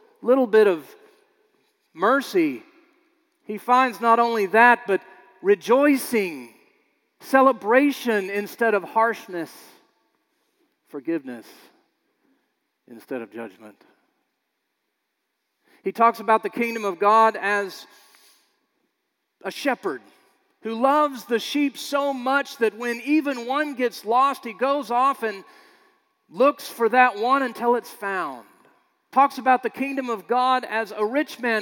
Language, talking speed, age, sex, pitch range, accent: English, 120 wpm, 40-59, male, 210-290 Hz, American